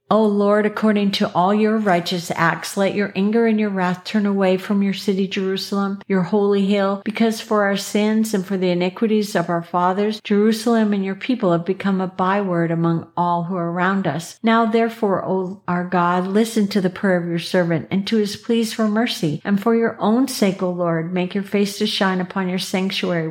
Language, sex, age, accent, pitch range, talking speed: English, female, 50-69, American, 180-215 Hz, 210 wpm